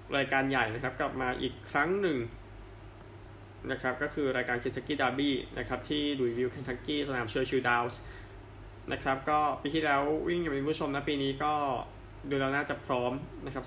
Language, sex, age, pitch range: Thai, male, 20-39, 110-140 Hz